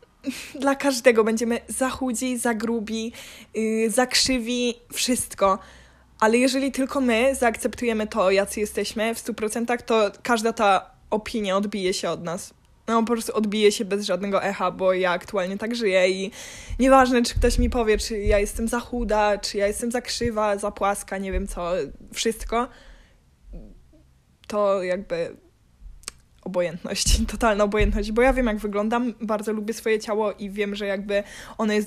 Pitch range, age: 200-235 Hz, 20-39